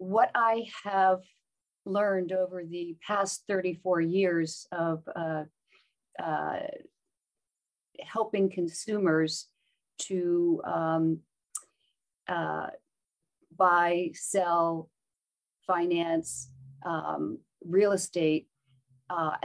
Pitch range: 165-200 Hz